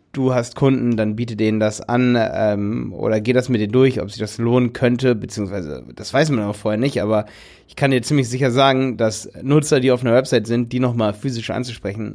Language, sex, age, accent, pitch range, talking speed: German, male, 30-49, German, 105-130 Hz, 220 wpm